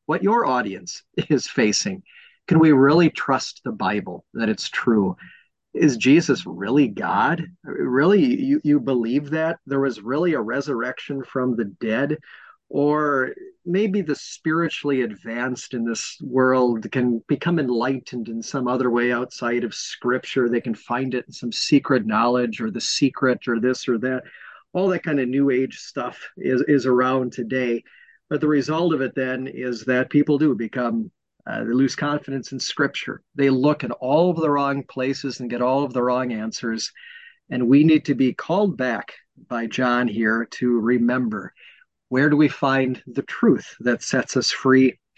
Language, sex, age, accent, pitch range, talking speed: English, male, 30-49, American, 125-145 Hz, 170 wpm